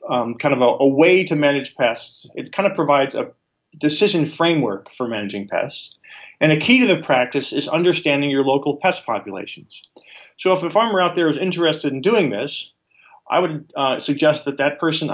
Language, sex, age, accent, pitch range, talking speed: English, male, 30-49, American, 130-170 Hz, 195 wpm